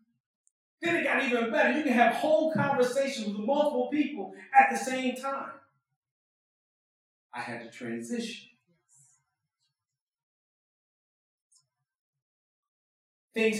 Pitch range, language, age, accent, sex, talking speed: 140-215 Hz, English, 40-59, American, male, 95 wpm